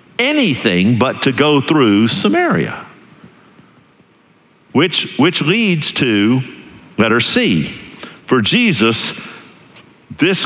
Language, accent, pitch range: English, American, 130-180 Hz